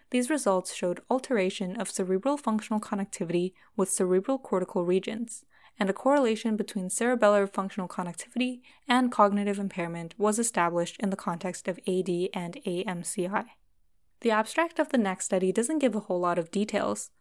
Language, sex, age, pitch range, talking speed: English, female, 10-29, 185-230 Hz, 155 wpm